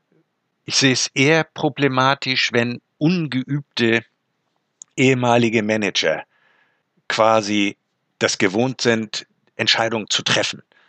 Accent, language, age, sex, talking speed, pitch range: German, German, 60-79, male, 90 wpm, 105-125 Hz